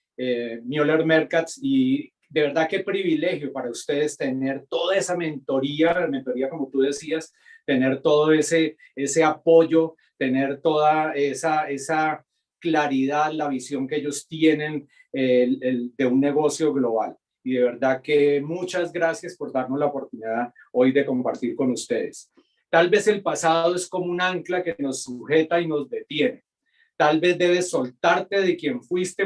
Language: Spanish